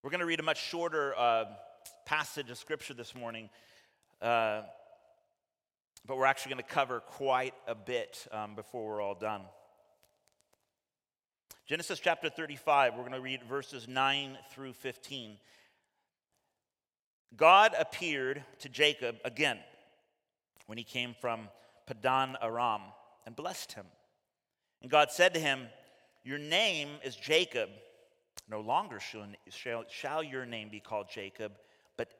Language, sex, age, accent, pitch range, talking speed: English, male, 30-49, American, 115-160 Hz, 135 wpm